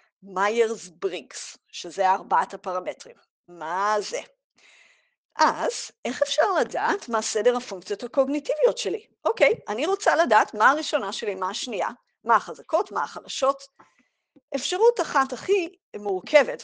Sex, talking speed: female, 125 wpm